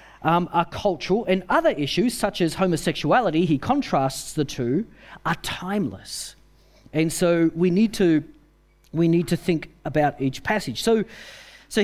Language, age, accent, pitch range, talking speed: English, 40-59, Australian, 155-230 Hz, 145 wpm